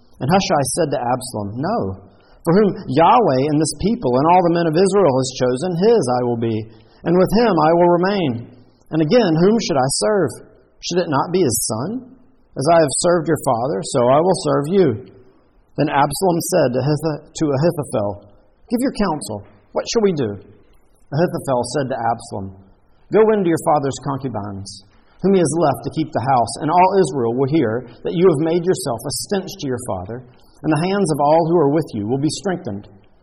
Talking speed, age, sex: 195 wpm, 50-69, male